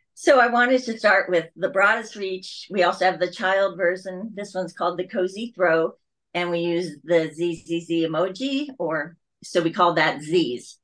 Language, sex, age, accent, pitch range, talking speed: English, female, 40-59, American, 155-230 Hz, 185 wpm